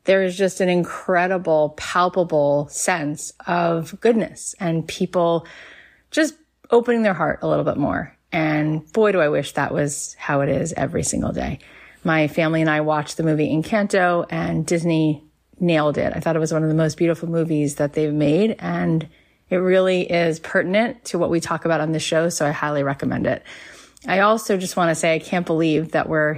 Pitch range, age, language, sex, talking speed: 155-180 Hz, 30-49, English, female, 195 wpm